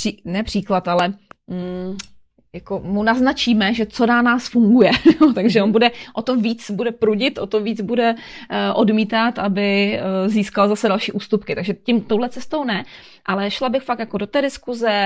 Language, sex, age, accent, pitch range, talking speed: Czech, female, 30-49, native, 195-230 Hz, 180 wpm